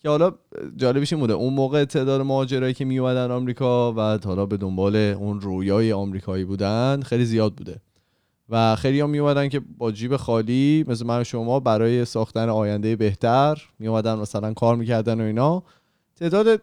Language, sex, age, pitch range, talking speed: Persian, male, 30-49, 105-150 Hz, 165 wpm